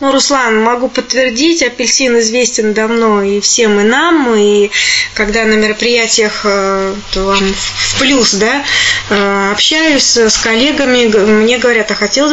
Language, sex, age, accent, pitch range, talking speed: Russian, female, 20-39, native, 210-270 Hz, 125 wpm